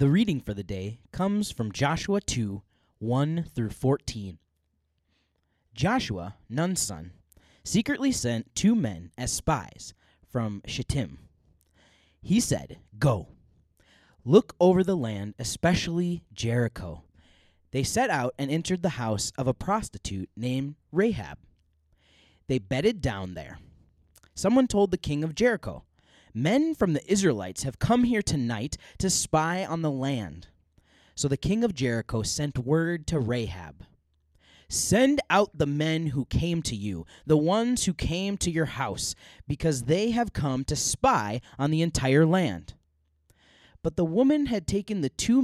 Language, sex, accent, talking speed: English, male, American, 145 wpm